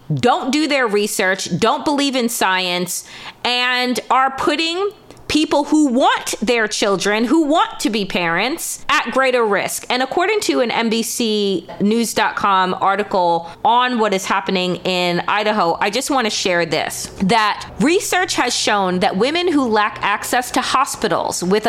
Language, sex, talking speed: English, female, 150 wpm